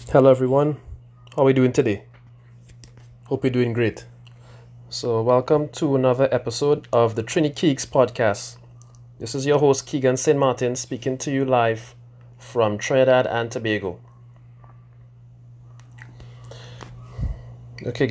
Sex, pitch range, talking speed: male, 120-130 Hz, 125 wpm